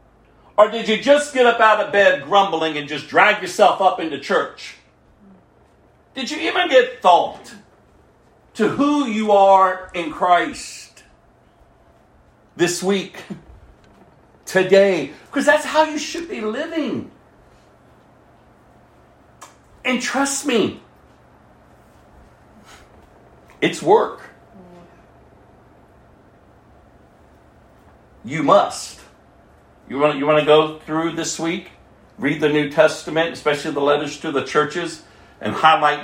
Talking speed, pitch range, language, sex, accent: 110 wpm, 150-240 Hz, English, male, American